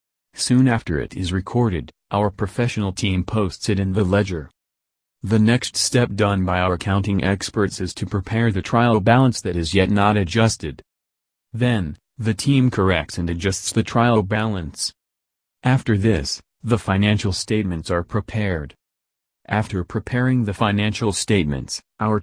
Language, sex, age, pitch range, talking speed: English, male, 40-59, 90-115 Hz, 145 wpm